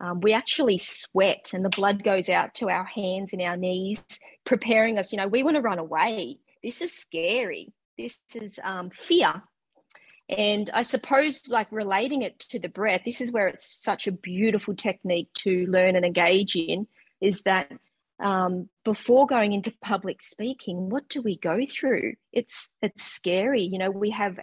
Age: 30-49